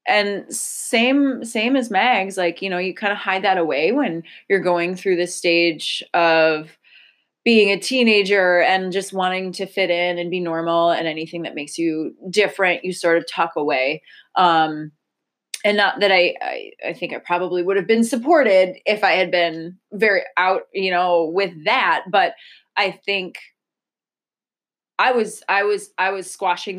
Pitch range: 175-200 Hz